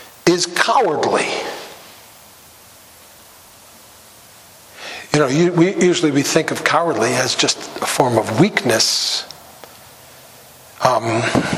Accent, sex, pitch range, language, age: American, male, 140-185 Hz, English, 60-79